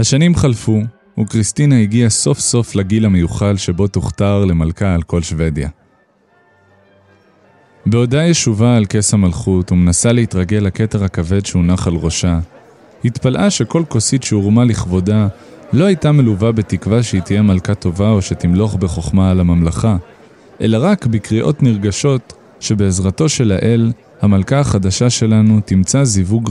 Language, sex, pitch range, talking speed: Hebrew, male, 95-120 Hz, 125 wpm